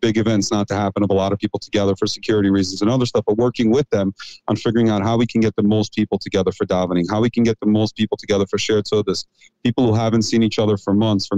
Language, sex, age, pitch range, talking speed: English, male, 30-49, 100-115 Hz, 280 wpm